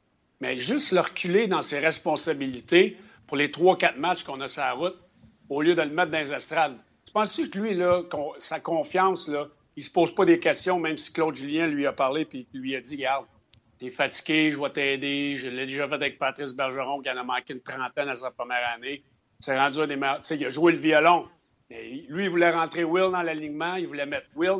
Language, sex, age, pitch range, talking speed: French, male, 60-79, 140-175 Hz, 235 wpm